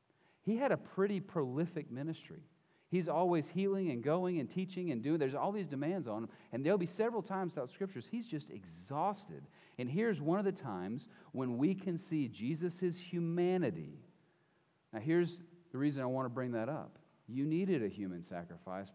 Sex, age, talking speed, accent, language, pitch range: male, 40-59, 185 wpm, American, English, 110-170 Hz